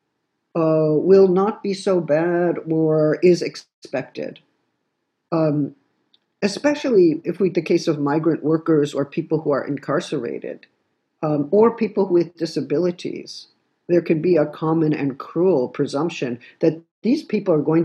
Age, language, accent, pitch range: 50-69, French, American, 145-175 Hz